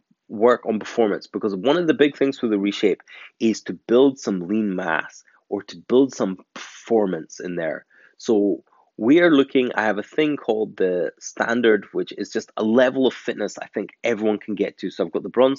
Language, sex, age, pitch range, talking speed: English, male, 20-39, 100-130 Hz, 210 wpm